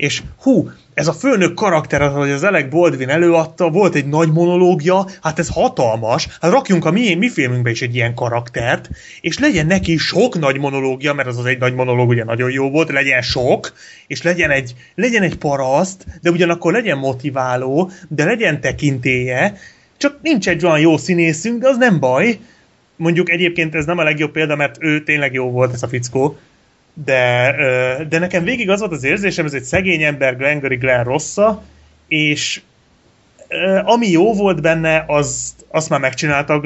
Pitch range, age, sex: 130-170 Hz, 30-49, male